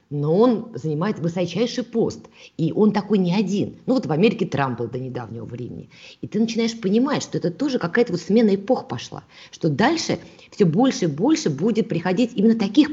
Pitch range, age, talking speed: 160-225 Hz, 20-39, 185 wpm